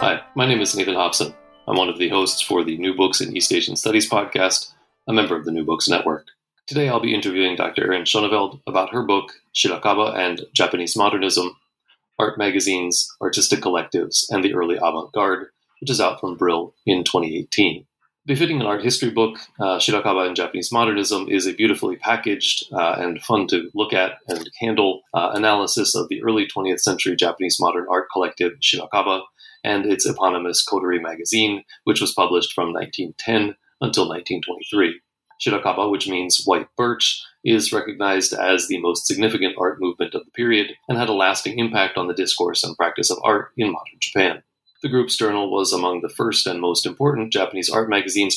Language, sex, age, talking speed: English, male, 30-49, 180 wpm